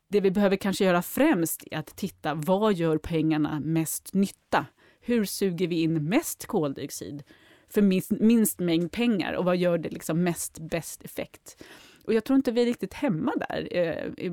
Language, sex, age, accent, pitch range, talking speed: Swedish, female, 30-49, native, 160-195 Hz, 180 wpm